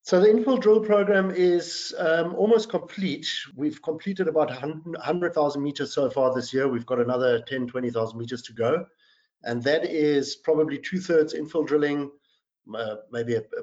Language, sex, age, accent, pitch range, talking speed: English, male, 50-69, German, 120-150 Hz, 165 wpm